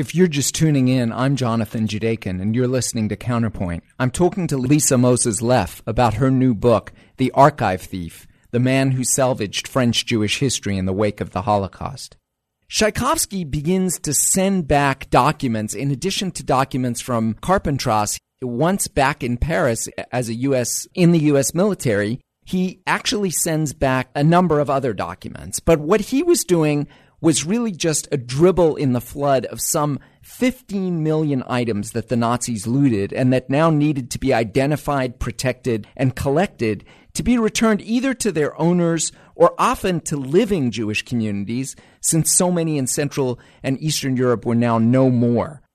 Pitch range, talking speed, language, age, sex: 120-165 Hz, 170 wpm, English, 40-59, male